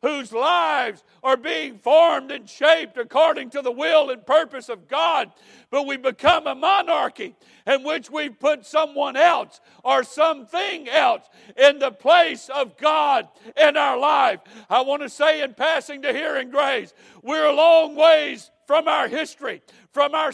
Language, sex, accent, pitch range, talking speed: English, male, American, 280-340 Hz, 160 wpm